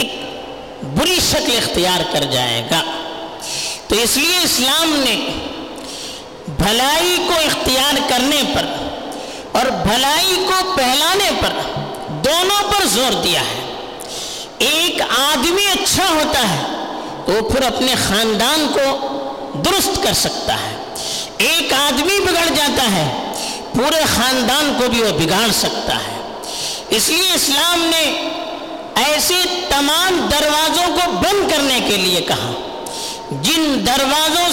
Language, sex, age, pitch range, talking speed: Urdu, female, 50-69, 255-345 Hz, 110 wpm